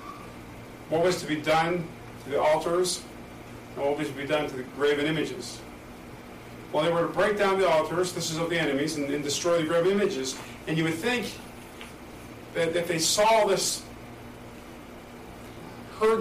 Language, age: English, 40-59